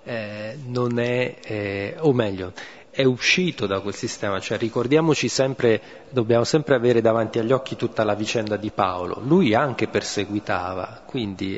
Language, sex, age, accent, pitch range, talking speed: Italian, male, 40-59, native, 105-130 Hz, 150 wpm